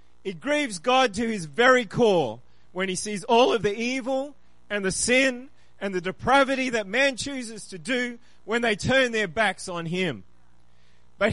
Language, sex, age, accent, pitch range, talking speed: English, male, 30-49, Australian, 195-270 Hz, 175 wpm